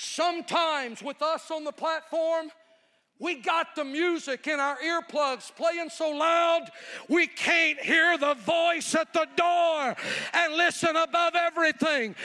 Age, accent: 50-69, American